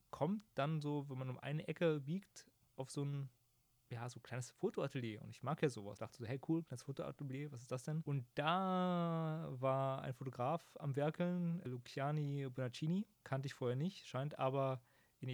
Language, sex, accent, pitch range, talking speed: German, male, German, 125-145 Hz, 190 wpm